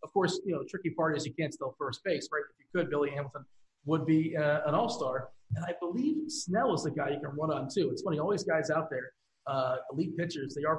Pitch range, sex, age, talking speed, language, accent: 145-180 Hz, male, 40-59, 265 wpm, English, American